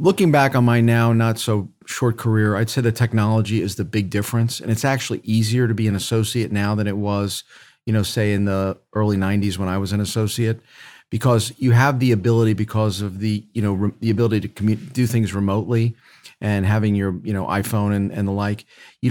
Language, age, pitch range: English, 40-59, 100-120 Hz